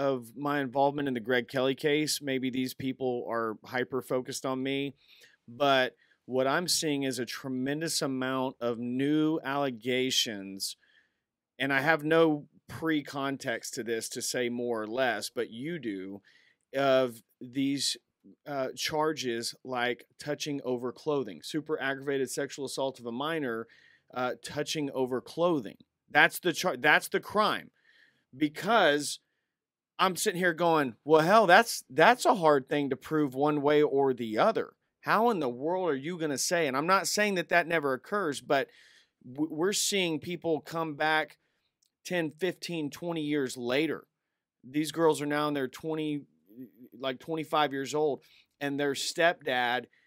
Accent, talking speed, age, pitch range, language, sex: American, 155 wpm, 40-59, 130-155 Hz, English, male